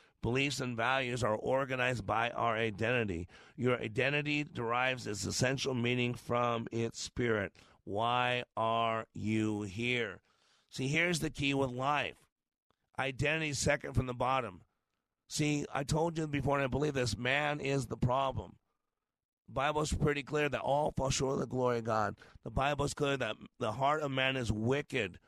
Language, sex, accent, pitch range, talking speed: English, male, American, 115-140 Hz, 170 wpm